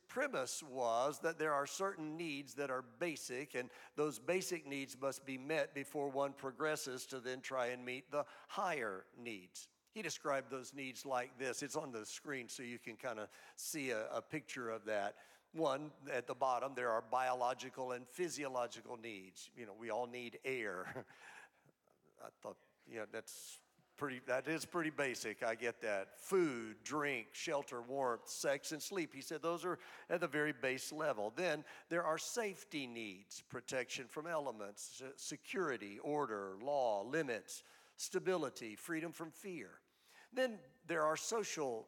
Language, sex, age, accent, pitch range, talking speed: English, male, 50-69, American, 125-155 Hz, 160 wpm